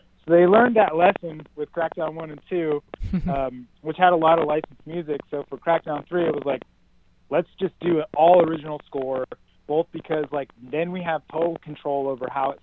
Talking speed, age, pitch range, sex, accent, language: 200 wpm, 30-49, 135-160 Hz, male, American, English